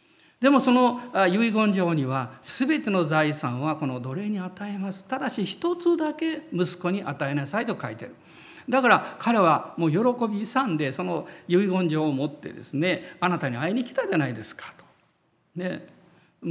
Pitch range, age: 150-235 Hz, 50-69